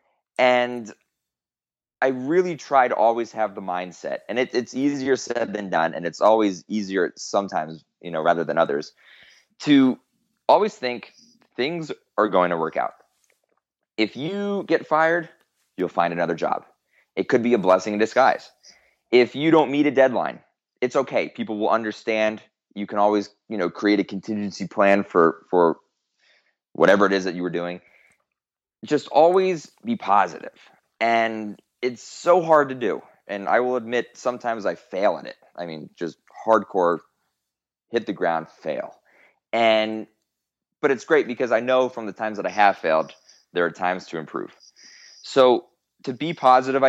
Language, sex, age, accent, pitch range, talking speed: English, male, 20-39, American, 100-135 Hz, 165 wpm